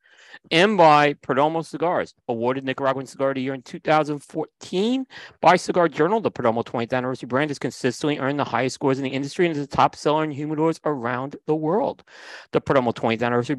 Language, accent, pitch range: English, American, 130-160 Hz